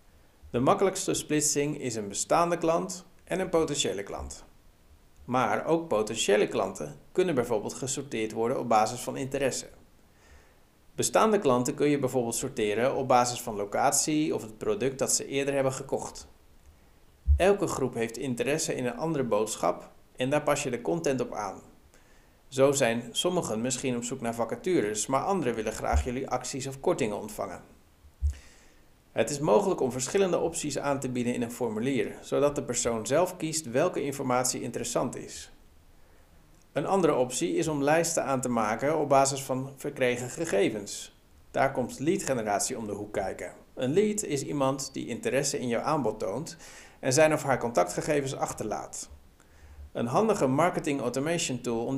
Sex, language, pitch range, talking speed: male, Dutch, 110-150 Hz, 160 wpm